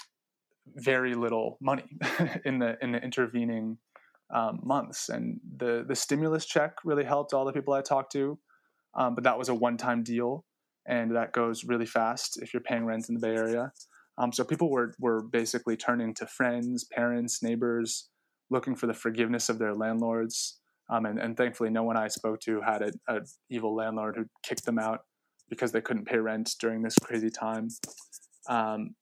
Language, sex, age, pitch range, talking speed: English, male, 20-39, 115-130 Hz, 185 wpm